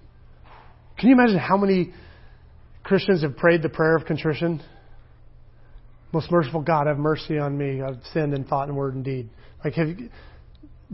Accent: American